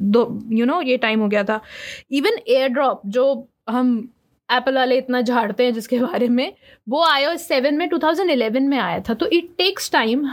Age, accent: 20-39, native